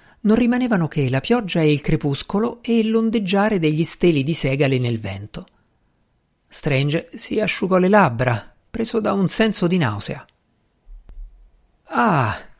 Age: 50-69